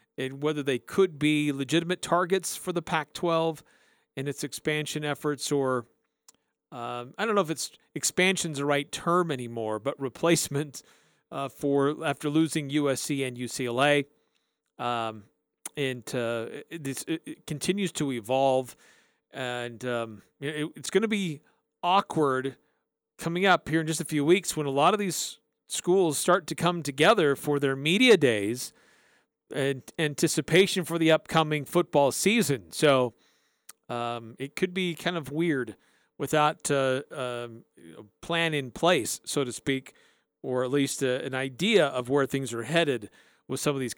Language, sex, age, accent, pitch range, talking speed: English, male, 40-59, American, 135-165 Hz, 155 wpm